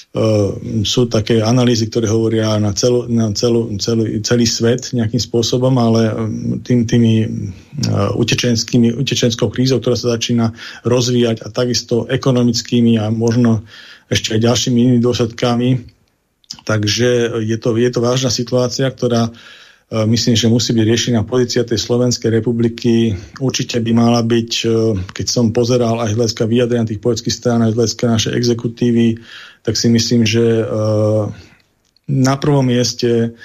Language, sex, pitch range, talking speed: Slovak, male, 115-125 Hz, 140 wpm